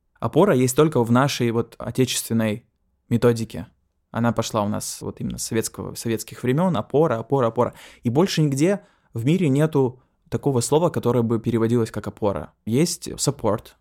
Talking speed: 155 wpm